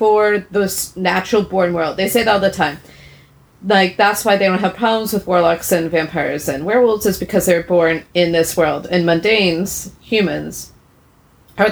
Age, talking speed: 30-49, 180 wpm